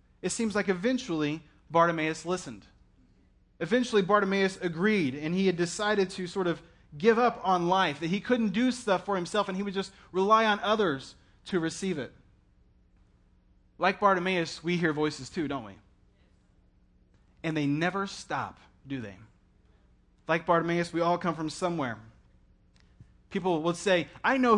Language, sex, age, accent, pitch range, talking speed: English, male, 30-49, American, 160-205 Hz, 155 wpm